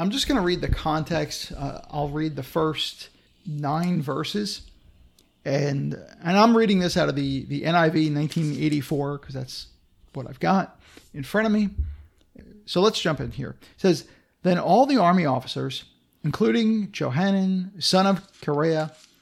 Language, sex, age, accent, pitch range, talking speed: English, male, 40-59, American, 140-190 Hz, 160 wpm